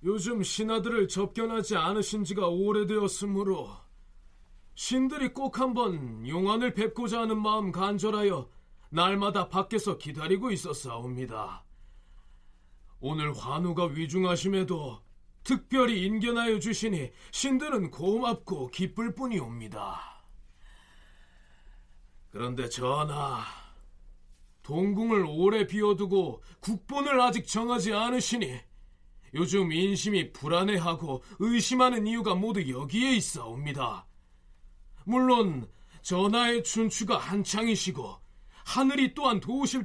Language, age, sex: Korean, 30-49, male